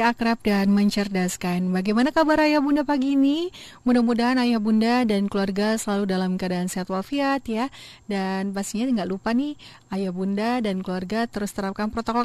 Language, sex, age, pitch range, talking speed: Indonesian, female, 30-49, 195-270 Hz, 155 wpm